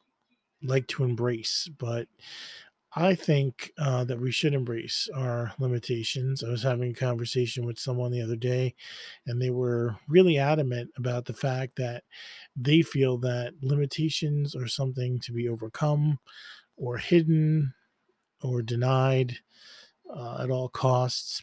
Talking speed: 135 wpm